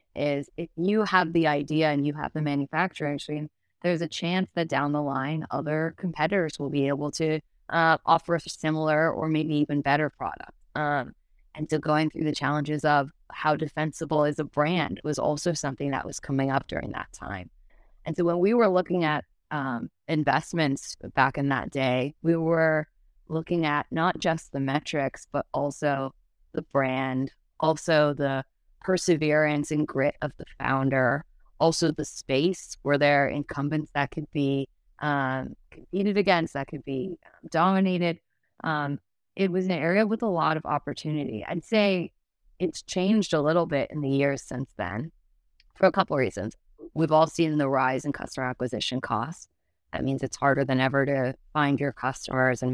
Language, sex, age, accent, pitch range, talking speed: English, female, 20-39, American, 140-165 Hz, 175 wpm